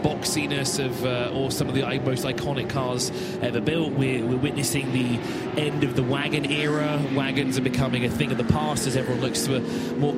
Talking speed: 200 wpm